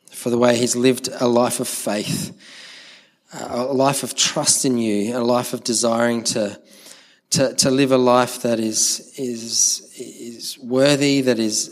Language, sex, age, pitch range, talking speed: English, male, 20-39, 115-130 Hz, 165 wpm